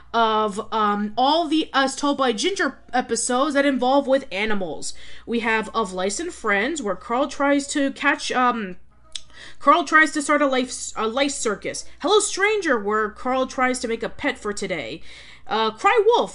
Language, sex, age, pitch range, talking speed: English, female, 30-49, 215-290 Hz, 175 wpm